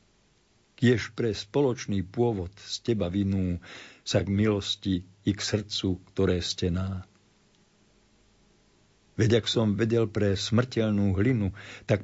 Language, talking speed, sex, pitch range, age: Slovak, 120 wpm, male, 95-110 Hz, 50-69